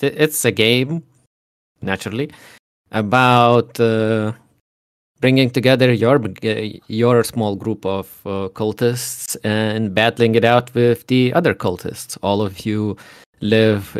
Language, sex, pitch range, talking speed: English, male, 100-115 Hz, 115 wpm